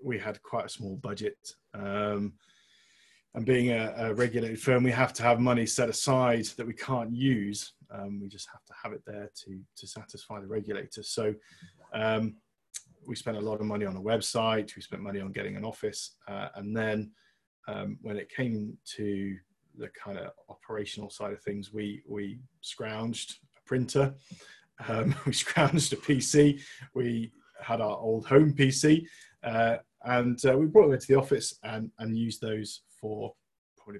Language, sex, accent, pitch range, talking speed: English, male, British, 105-130 Hz, 180 wpm